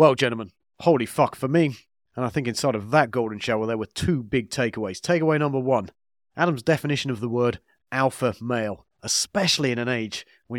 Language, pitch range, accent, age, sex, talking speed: English, 110-140 Hz, British, 30-49, male, 195 wpm